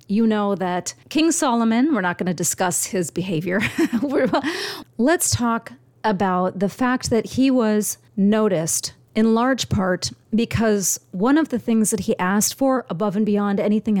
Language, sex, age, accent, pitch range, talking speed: English, female, 40-59, American, 175-230 Hz, 160 wpm